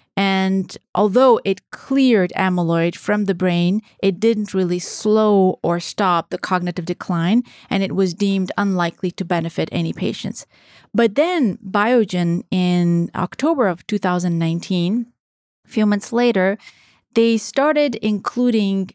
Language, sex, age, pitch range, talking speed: English, female, 30-49, 180-220 Hz, 125 wpm